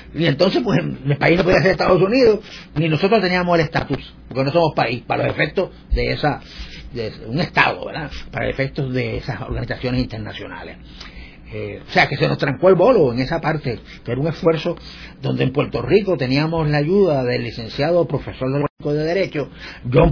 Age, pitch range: 40-59, 130-170 Hz